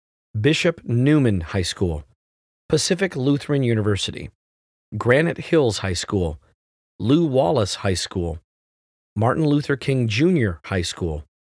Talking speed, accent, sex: 110 wpm, American, male